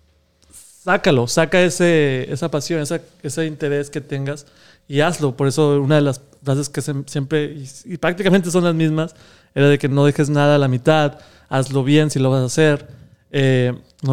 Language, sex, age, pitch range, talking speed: Spanish, male, 30-49, 130-150 Hz, 190 wpm